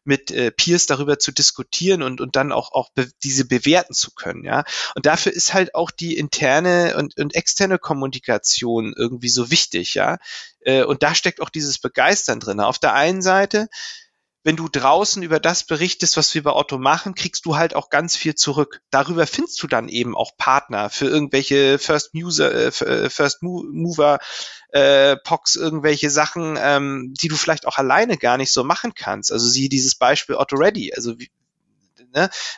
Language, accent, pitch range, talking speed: German, German, 140-175 Hz, 175 wpm